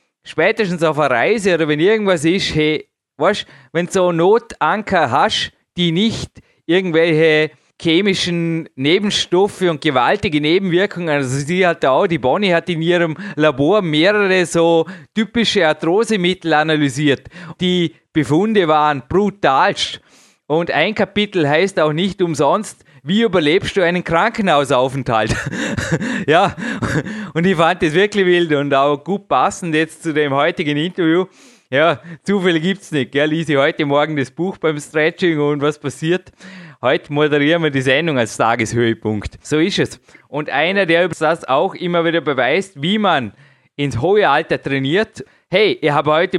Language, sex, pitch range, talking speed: German, male, 145-185 Hz, 145 wpm